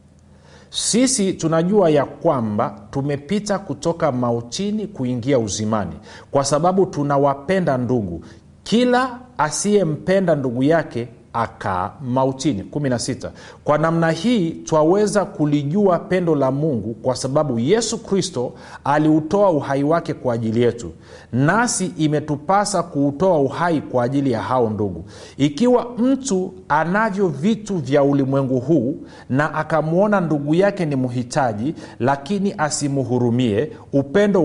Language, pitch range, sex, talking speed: Swahili, 120-180 Hz, male, 110 wpm